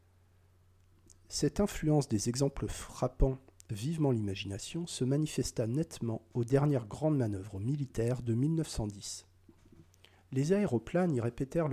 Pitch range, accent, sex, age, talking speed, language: 100-140 Hz, French, male, 40-59, 105 wpm, French